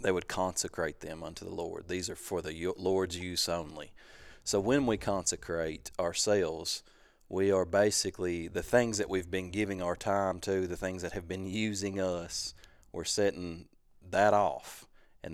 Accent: American